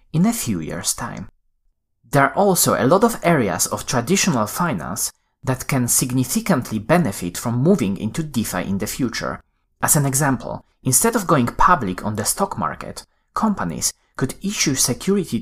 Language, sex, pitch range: Chinese, male, 105-160 Hz